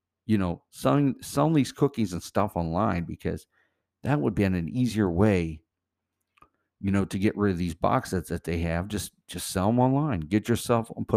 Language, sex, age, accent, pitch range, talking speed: English, male, 50-69, American, 90-115 Hz, 195 wpm